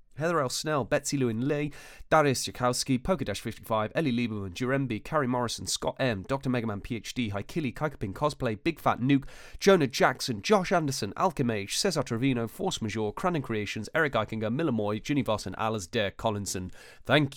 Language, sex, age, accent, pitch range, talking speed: English, male, 30-49, British, 100-140 Hz, 165 wpm